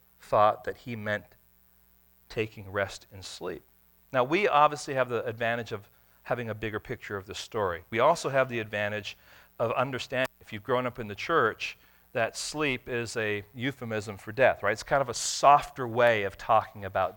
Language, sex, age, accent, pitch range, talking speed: English, male, 40-59, American, 105-130 Hz, 185 wpm